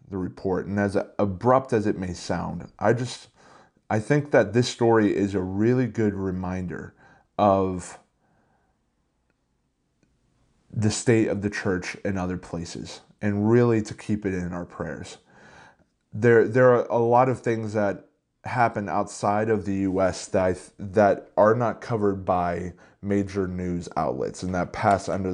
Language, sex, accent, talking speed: English, male, American, 160 wpm